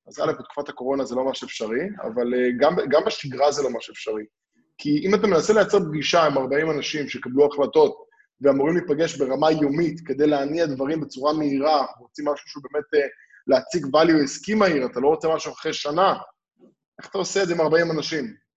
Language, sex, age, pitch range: Hebrew, male, 20-39, 140-175 Hz